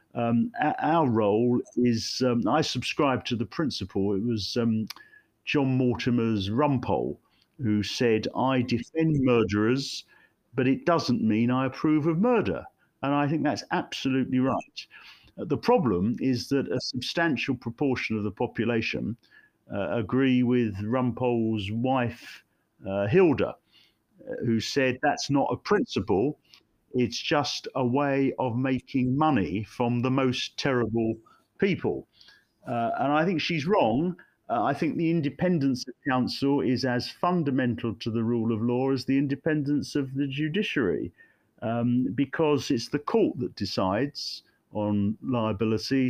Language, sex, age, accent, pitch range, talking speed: English, male, 50-69, British, 115-140 Hz, 140 wpm